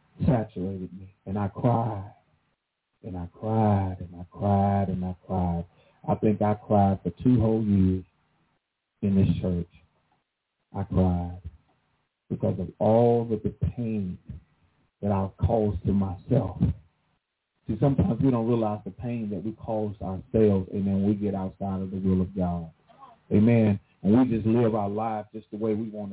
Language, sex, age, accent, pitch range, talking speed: English, male, 40-59, American, 100-120 Hz, 165 wpm